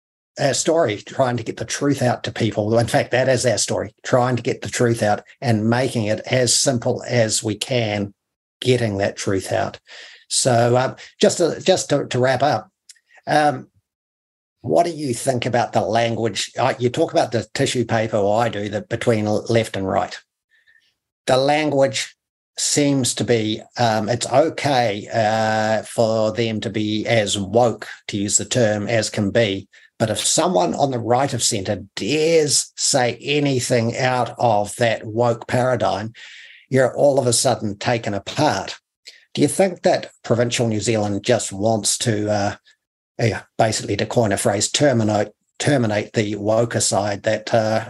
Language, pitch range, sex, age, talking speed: English, 105-125 Hz, male, 50-69, 165 wpm